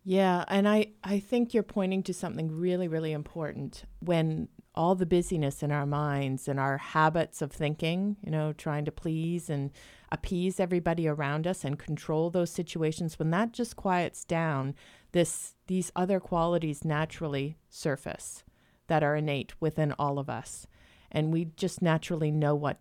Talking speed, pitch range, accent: 165 wpm, 155-185 Hz, American